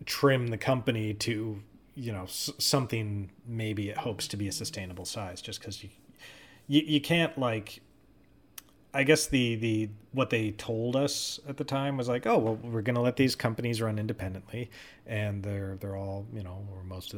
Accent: American